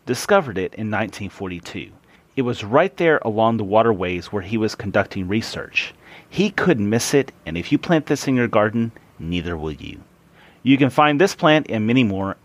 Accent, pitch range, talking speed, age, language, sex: American, 100-140 Hz, 190 wpm, 30-49, English, male